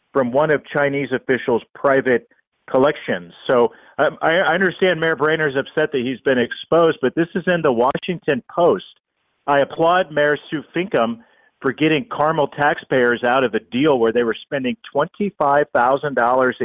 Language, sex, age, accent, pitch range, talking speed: English, male, 40-59, American, 120-145 Hz, 155 wpm